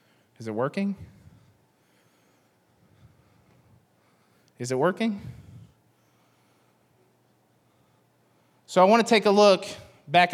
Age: 30-49